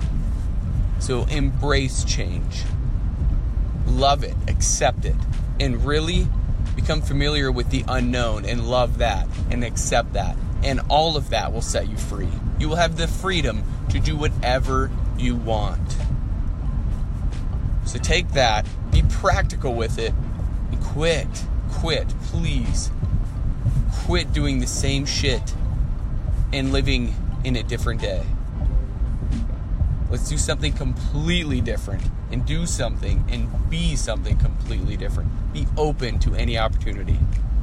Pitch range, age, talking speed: 85-120 Hz, 30-49, 125 wpm